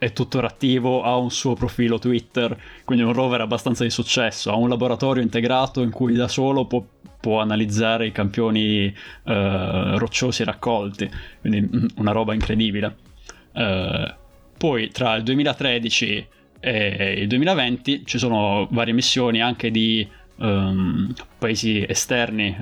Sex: male